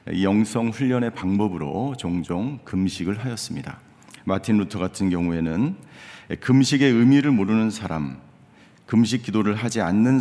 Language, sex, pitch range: Korean, male, 95-130 Hz